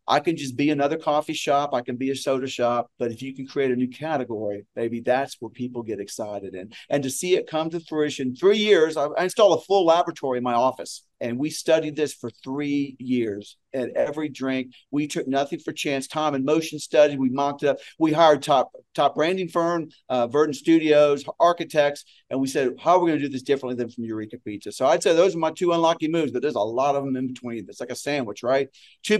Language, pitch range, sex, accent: English, 130-180 Hz, male, American